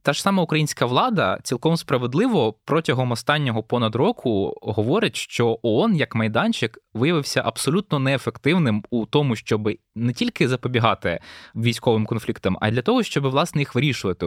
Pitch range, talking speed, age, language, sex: 115-145 Hz, 145 wpm, 20-39, Ukrainian, male